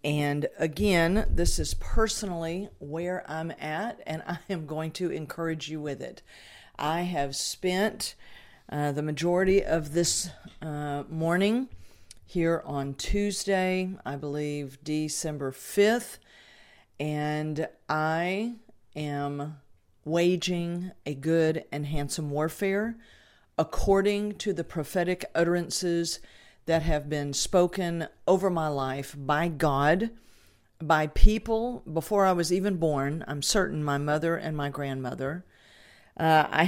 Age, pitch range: 50-69, 150-180 Hz